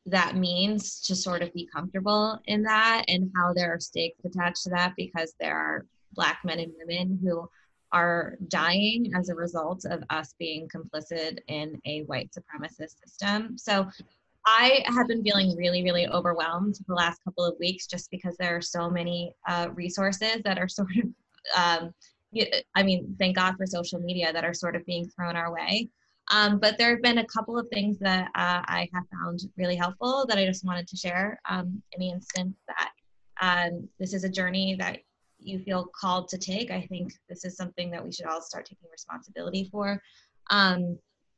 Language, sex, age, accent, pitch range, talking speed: English, female, 20-39, American, 175-200 Hz, 190 wpm